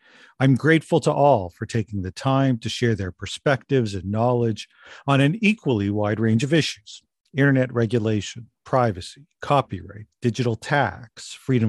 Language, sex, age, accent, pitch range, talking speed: English, male, 50-69, American, 110-145 Hz, 145 wpm